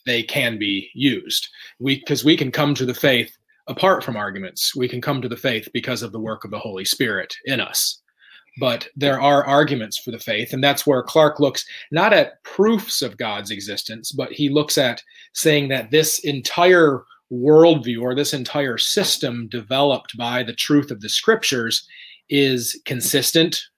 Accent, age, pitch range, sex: American, 30-49, 120-150 Hz, male